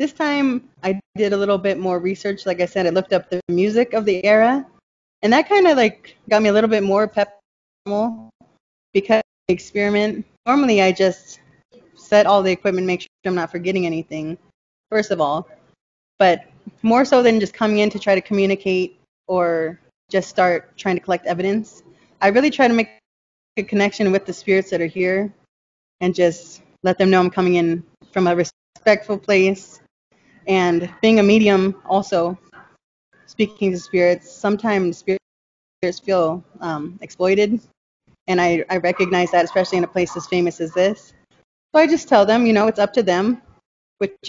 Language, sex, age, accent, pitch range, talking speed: English, female, 20-39, American, 180-210 Hz, 180 wpm